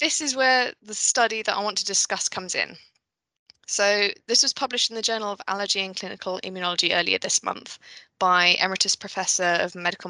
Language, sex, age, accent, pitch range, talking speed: English, female, 20-39, British, 185-215 Hz, 190 wpm